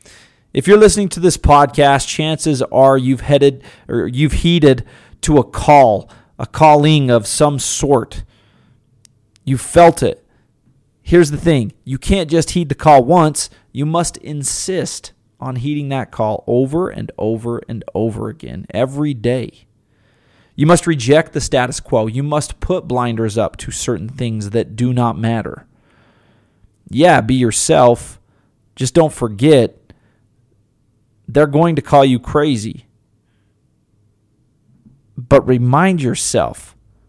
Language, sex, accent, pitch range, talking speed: English, male, American, 115-150 Hz, 135 wpm